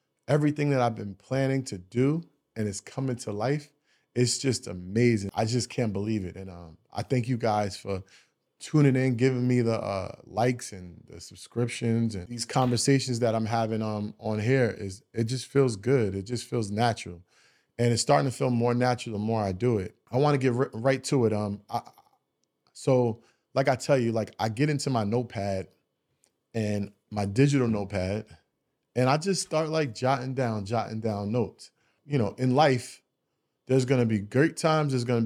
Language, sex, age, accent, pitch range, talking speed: English, male, 20-39, American, 105-130 Hz, 190 wpm